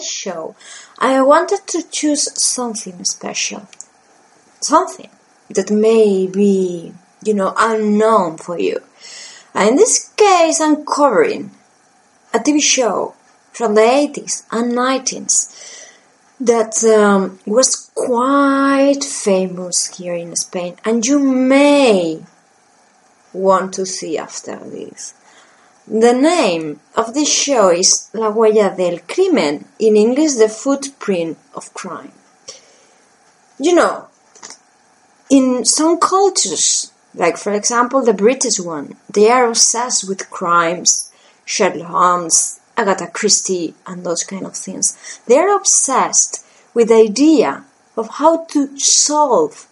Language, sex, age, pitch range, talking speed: English, female, 20-39, 195-280 Hz, 115 wpm